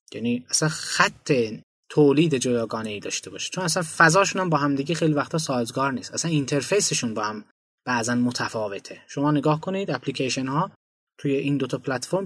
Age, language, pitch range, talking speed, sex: 20-39, Persian, 130-165 Hz, 160 wpm, male